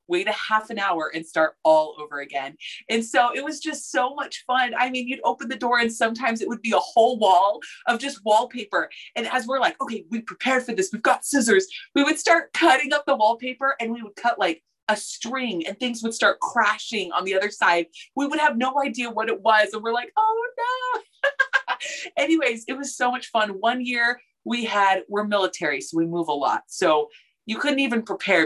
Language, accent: English, American